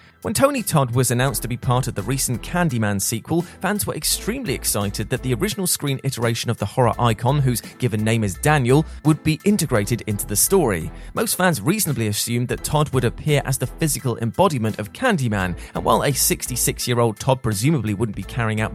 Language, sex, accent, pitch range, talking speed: English, male, British, 110-150 Hz, 195 wpm